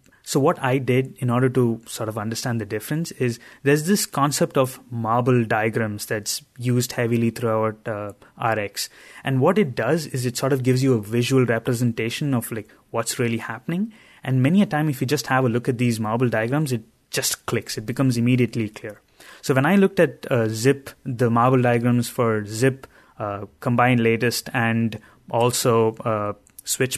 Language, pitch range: English, 115-140 Hz